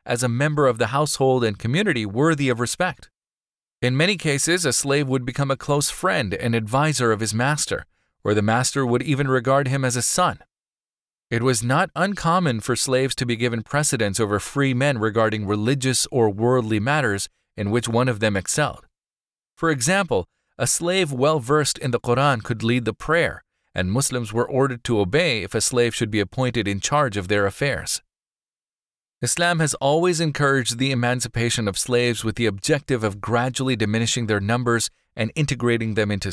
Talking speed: 180 wpm